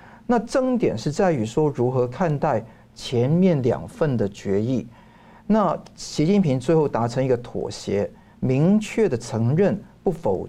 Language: Chinese